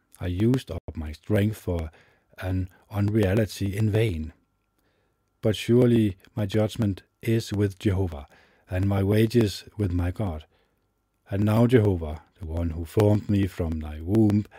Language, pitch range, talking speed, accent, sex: English, 90-110 Hz, 140 wpm, Danish, male